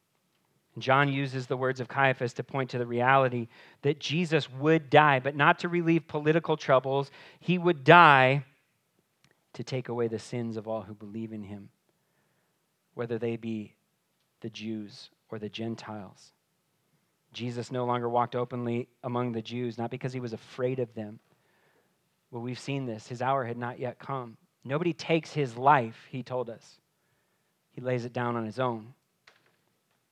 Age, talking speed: 30-49, 165 wpm